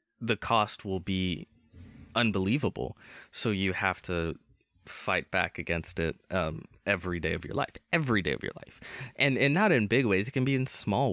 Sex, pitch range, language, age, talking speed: male, 90-120 Hz, English, 20-39, 190 wpm